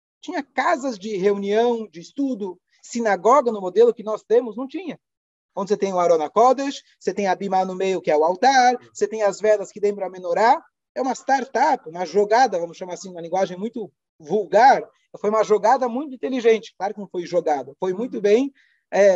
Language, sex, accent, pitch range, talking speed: Portuguese, male, Brazilian, 185-245 Hz, 200 wpm